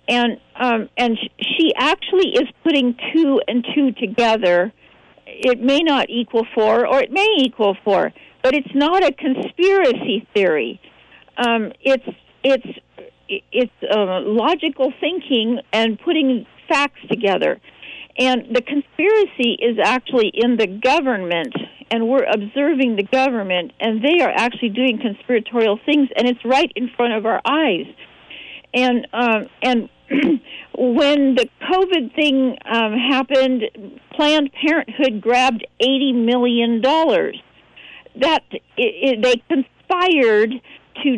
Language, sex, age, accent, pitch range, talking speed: English, female, 50-69, American, 230-285 Hz, 125 wpm